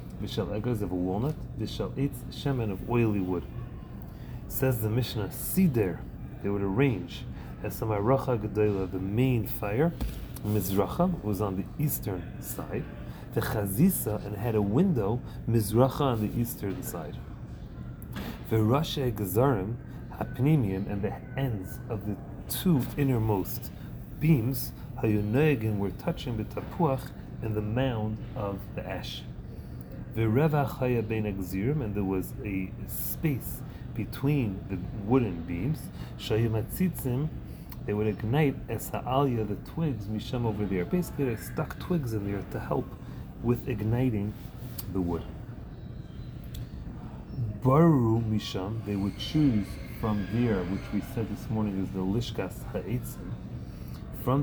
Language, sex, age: English, male, 30-49